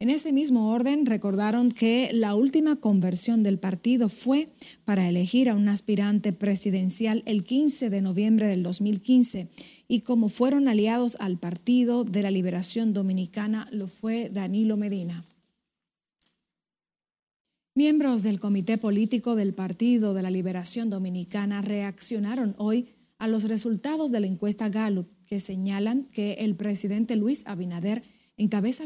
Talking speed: 135 wpm